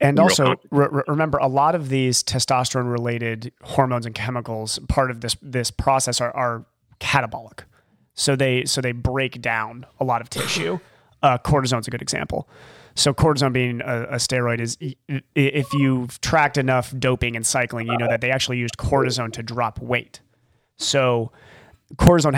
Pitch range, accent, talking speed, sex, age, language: 115-135 Hz, American, 165 wpm, male, 30-49, English